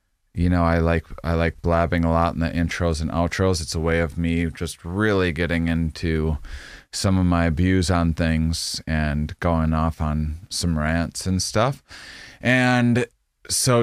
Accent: American